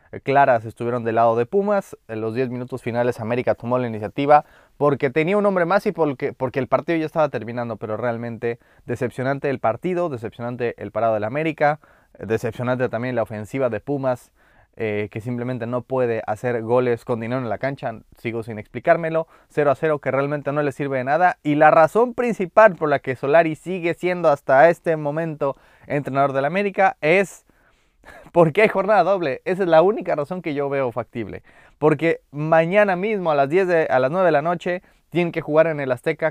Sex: male